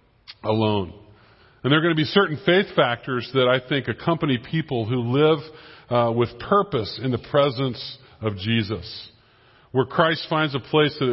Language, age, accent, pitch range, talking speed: English, 40-59, American, 115-145 Hz, 165 wpm